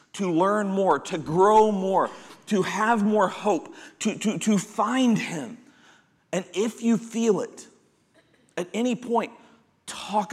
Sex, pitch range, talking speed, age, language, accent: male, 160-215 Hz, 140 wpm, 40-59, English, American